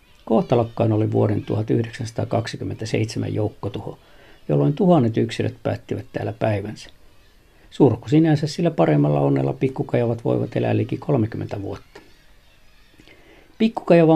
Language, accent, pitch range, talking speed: Finnish, native, 110-140 Hz, 100 wpm